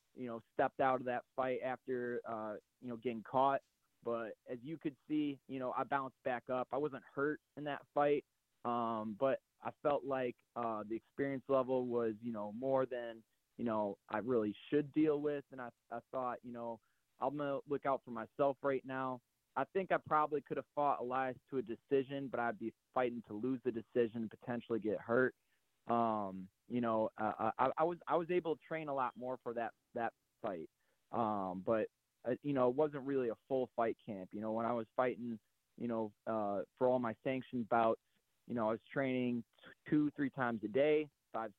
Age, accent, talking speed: 20-39, American, 205 wpm